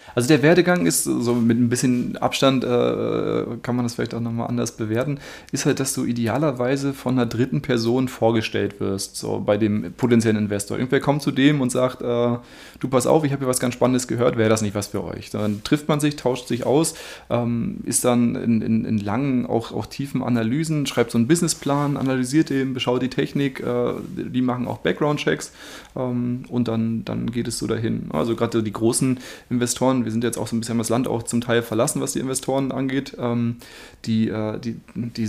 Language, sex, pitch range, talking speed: German, male, 115-135 Hz, 205 wpm